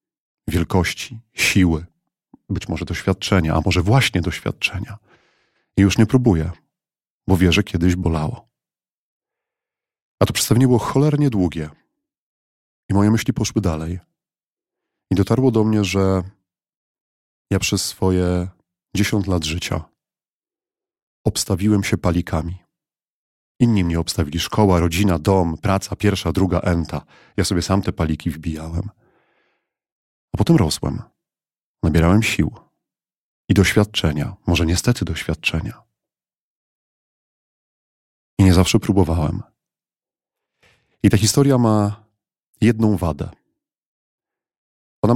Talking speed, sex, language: 105 wpm, male, Polish